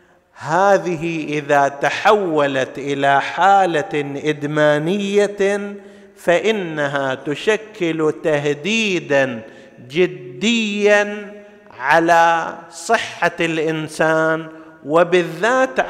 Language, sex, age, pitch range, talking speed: Arabic, male, 50-69, 150-195 Hz, 55 wpm